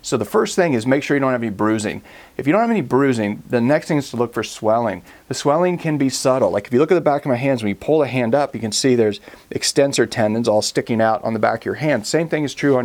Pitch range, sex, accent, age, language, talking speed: 110-145 Hz, male, American, 40-59, English, 315 wpm